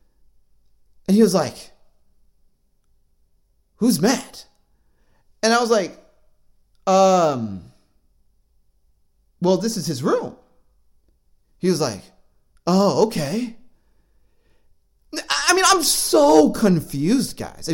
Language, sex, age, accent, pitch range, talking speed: English, male, 40-59, American, 145-235 Hz, 90 wpm